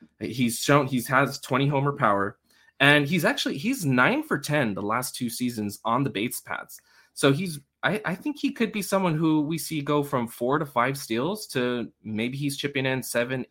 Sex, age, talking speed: male, 20-39, 205 wpm